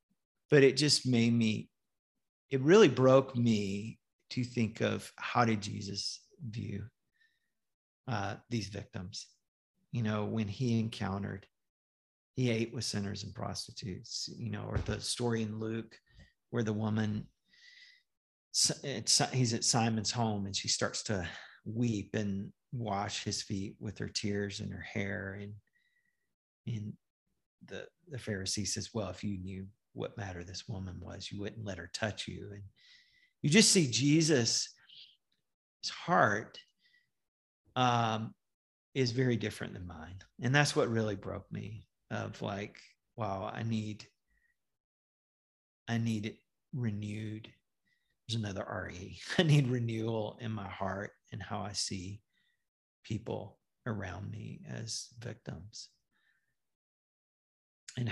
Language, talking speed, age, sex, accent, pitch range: English, 130 wpm, 40-59, male, American, 100-120 Hz